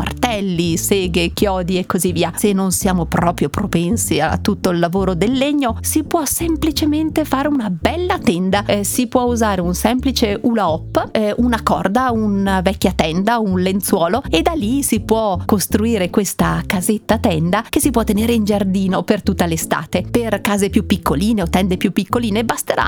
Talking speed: 175 wpm